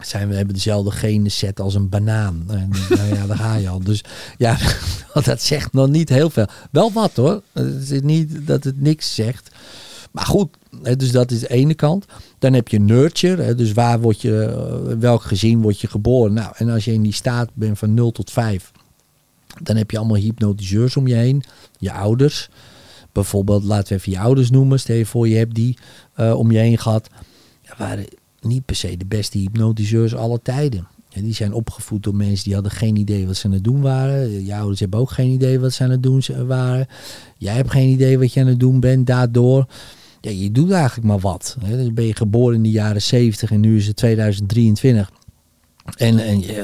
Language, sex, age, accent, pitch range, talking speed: Dutch, male, 50-69, Dutch, 105-130 Hz, 205 wpm